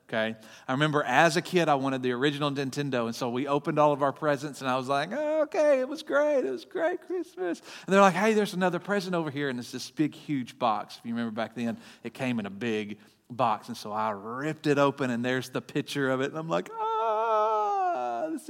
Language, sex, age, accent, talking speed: English, male, 40-59, American, 240 wpm